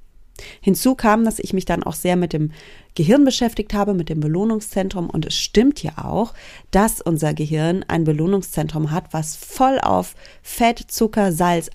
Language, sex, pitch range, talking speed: German, female, 170-215 Hz, 170 wpm